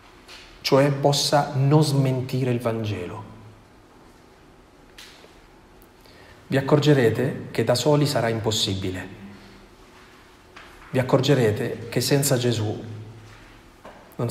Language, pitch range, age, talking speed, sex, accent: Italian, 105-135 Hz, 30-49, 80 wpm, male, native